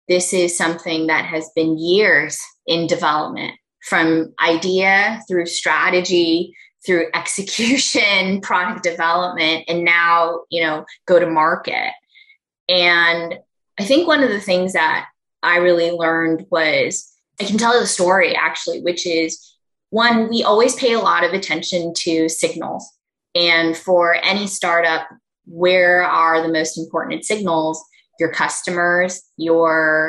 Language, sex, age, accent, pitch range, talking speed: English, female, 20-39, American, 165-200 Hz, 135 wpm